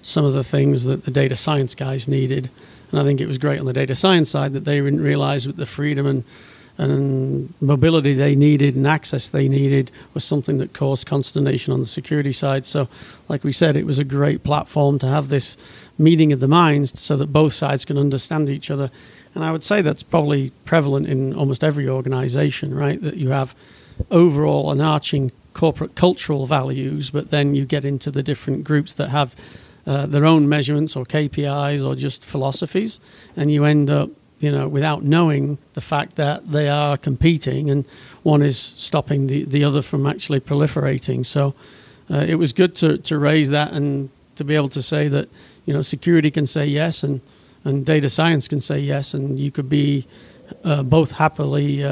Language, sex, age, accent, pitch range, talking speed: English, male, 40-59, British, 135-150 Hz, 195 wpm